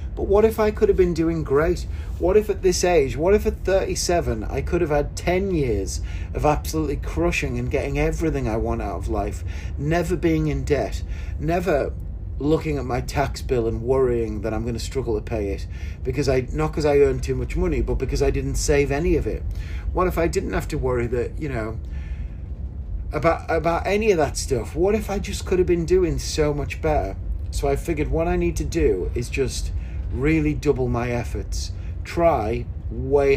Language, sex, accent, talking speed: English, male, British, 205 wpm